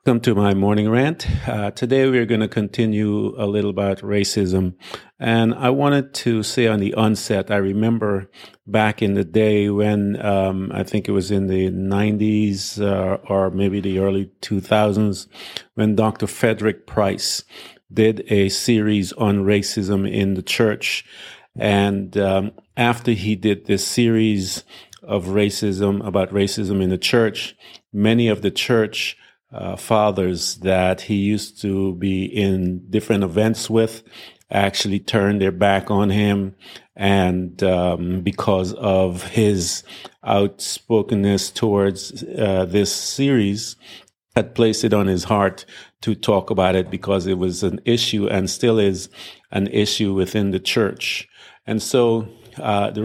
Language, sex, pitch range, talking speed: English, male, 95-110 Hz, 145 wpm